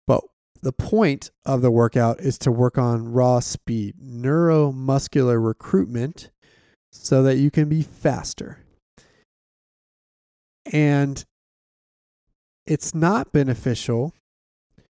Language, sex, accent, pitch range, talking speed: English, male, American, 115-145 Hz, 95 wpm